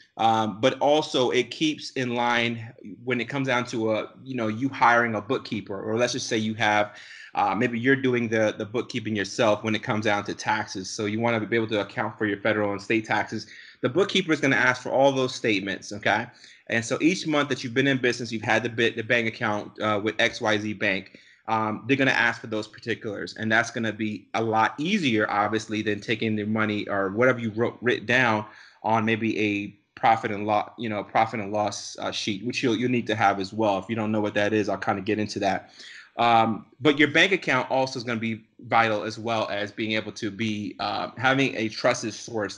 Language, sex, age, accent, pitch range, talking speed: English, male, 30-49, American, 105-125 Hz, 235 wpm